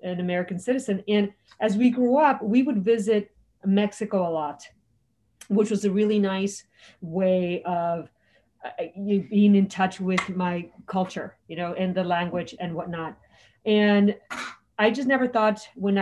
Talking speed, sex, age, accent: 155 wpm, female, 30-49, American